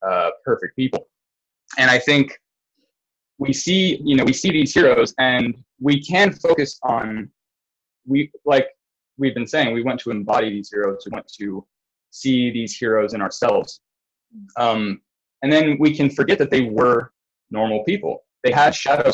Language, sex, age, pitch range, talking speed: English, male, 20-39, 110-140 Hz, 165 wpm